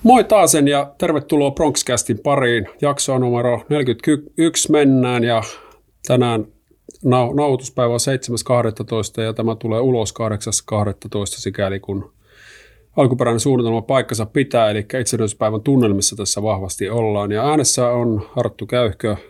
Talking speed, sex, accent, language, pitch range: 115 wpm, male, native, Finnish, 105-130 Hz